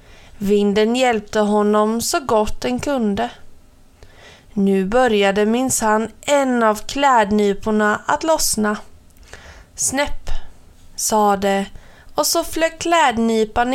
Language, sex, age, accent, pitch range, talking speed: Swedish, female, 30-49, native, 200-260 Hz, 100 wpm